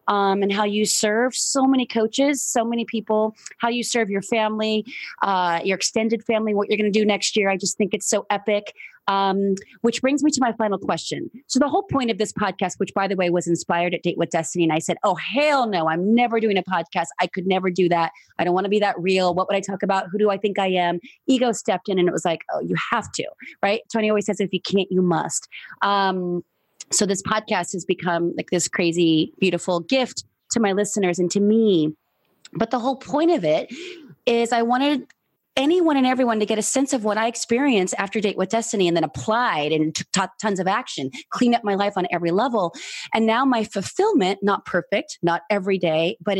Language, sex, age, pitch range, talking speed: English, female, 30-49, 185-230 Hz, 230 wpm